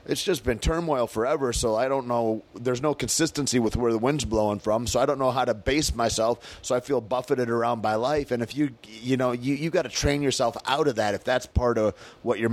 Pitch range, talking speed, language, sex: 110-130 Hz, 255 wpm, English, male